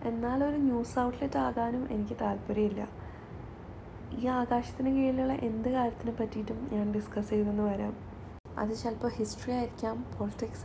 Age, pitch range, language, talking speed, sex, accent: 20-39, 205-255 Hz, Malayalam, 120 wpm, female, native